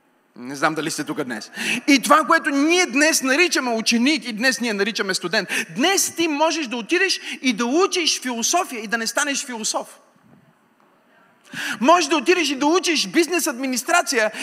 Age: 40-59